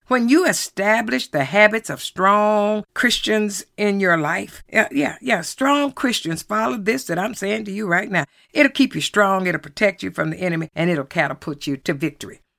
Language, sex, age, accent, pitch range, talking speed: English, female, 60-79, American, 175-260 Hz, 195 wpm